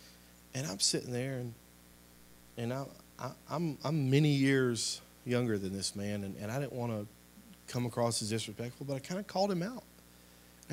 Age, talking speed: 40-59, 190 wpm